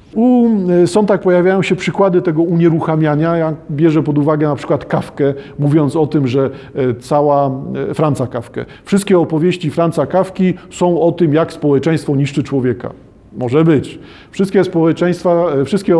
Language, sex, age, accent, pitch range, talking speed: Polish, male, 40-59, native, 150-180 Hz, 145 wpm